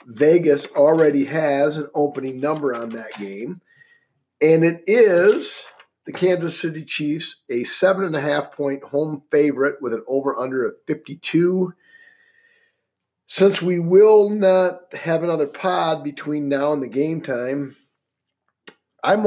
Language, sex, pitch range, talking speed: English, male, 145-180 Hz, 130 wpm